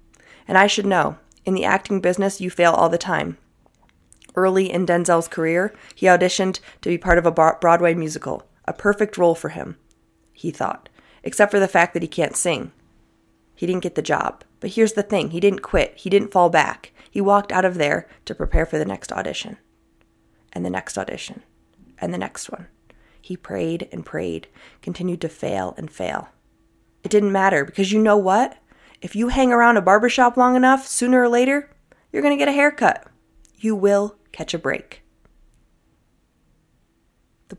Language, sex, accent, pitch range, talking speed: English, female, American, 160-200 Hz, 185 wpm